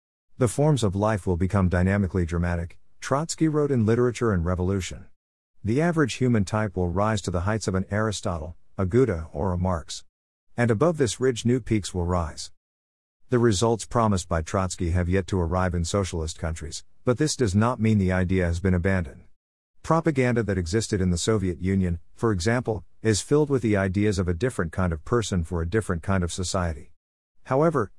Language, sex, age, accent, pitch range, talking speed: English, male, 50-69, American, 85-115 Hz, 190 wpm